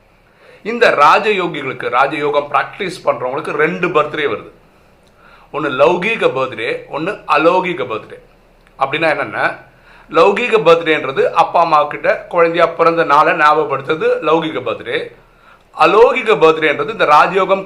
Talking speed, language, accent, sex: 100 wpm, Tamil, native, male